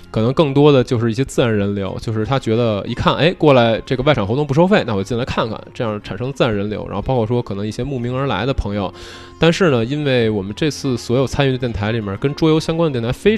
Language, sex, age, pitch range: Chinese, male, 20-39, 100-135 Hz